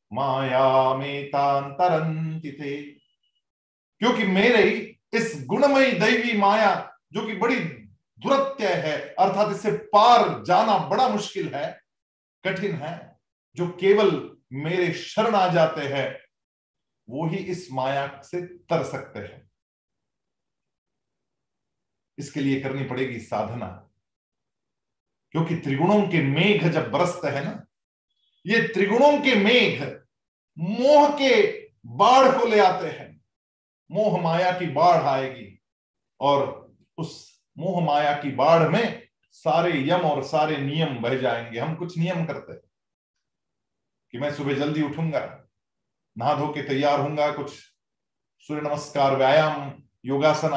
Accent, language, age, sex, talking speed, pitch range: native, Hindi, 40-59, male, 120 wpm, 140-185 Hz